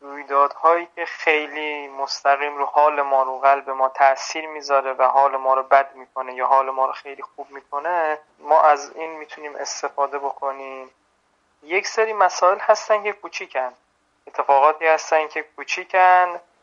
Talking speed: 150 wpm